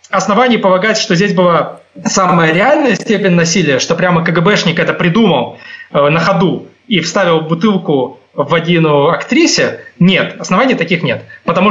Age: 20-39